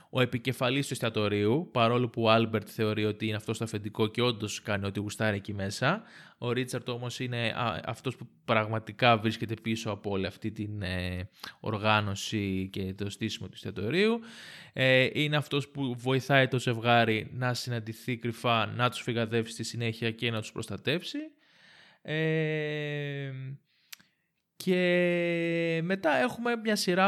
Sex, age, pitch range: male, 20-39, 110-150 Hz